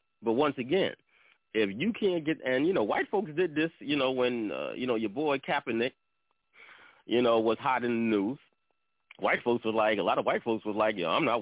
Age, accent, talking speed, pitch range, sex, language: 30-49, American, 230 wpm, 110-135 Hz, male, English